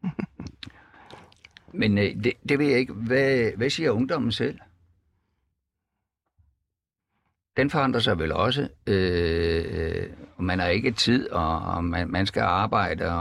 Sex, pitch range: male, 90-120 Hz